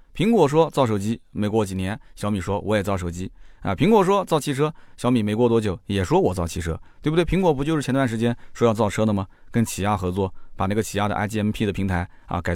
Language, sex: Chinese, male